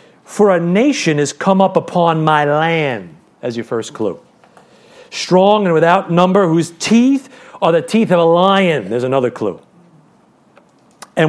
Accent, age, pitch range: American, 40-59, 160-225 Hz